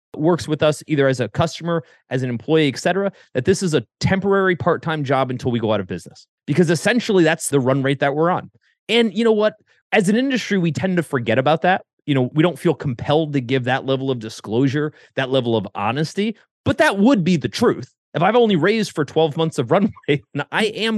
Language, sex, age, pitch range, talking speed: English, male, 30-49, 135-215 Hz, 230 wpm